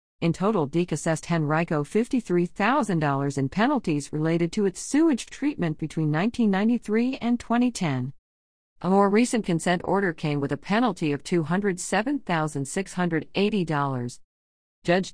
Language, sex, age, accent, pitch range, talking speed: English, female, 50-69, American, 145-195 Hz, 115 wpm